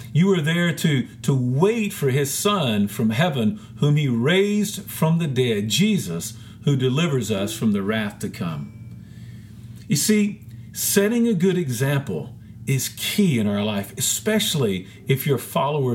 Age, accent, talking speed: 50-69, American, 160 wpm